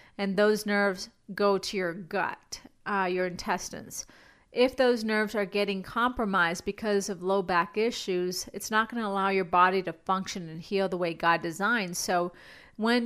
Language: English